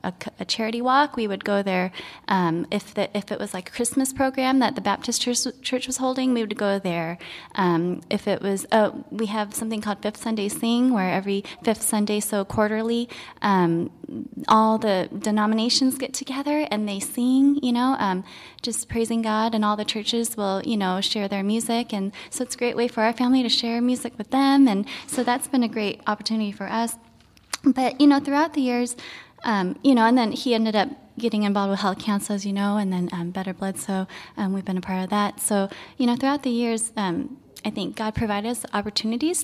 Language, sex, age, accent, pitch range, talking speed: English, female, 20-39, American, 200-250 Hz, 220 wpm